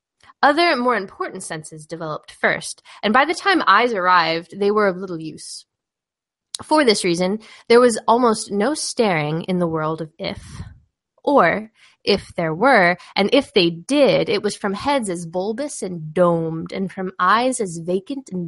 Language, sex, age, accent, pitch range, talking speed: English, female, 10-29, American, 170-275 Hz, 170 wpm